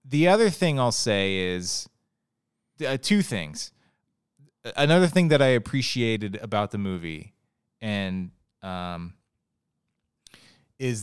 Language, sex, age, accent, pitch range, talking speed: English, male, 20-39, American, 115-145 Hz, 110 wpm